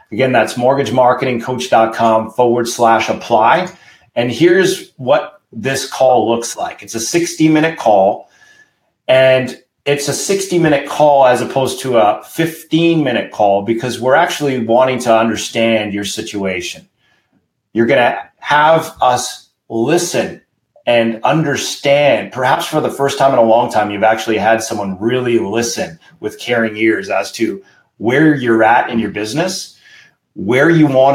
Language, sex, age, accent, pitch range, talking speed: English, male, 30-49, American, 115-145 Hz, 145 wpm